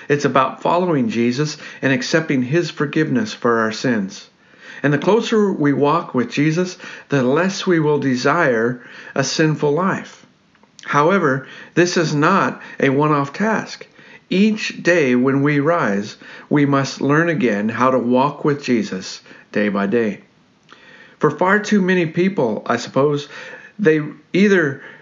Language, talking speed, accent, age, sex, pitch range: English, 140 wpm, American, 50-69, male, 135-175 Hz